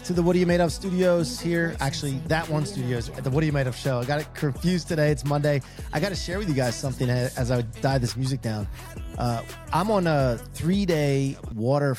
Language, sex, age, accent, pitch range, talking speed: English, male, 30-49, American, 115-150 Hz, 245 wpm